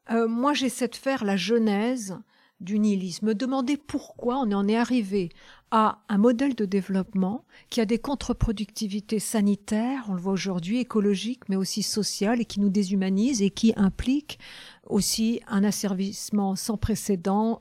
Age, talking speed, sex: 50-69, 155 wpm, female